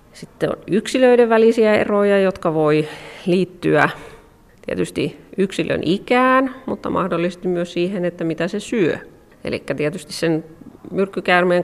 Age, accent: 30-49, native